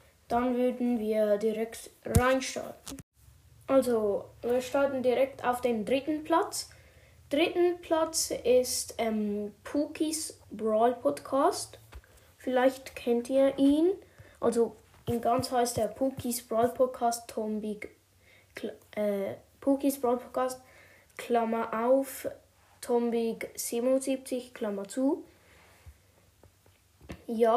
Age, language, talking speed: 20-39, German, 95 wpm